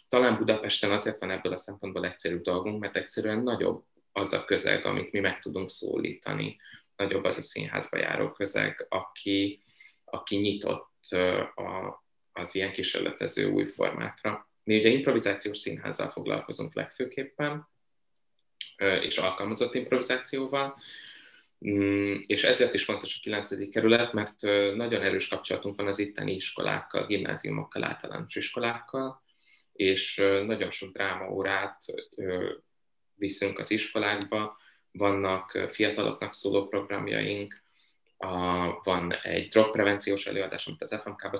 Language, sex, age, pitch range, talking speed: Hungarian, male, 20-39, 95-115 Hz, 115 wpm